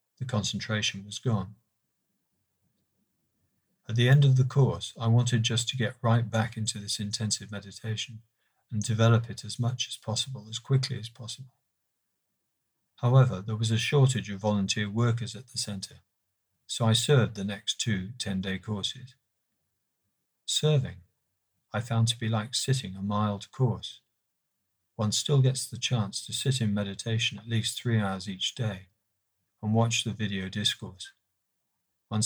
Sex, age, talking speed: male, 50-69, 155 wpm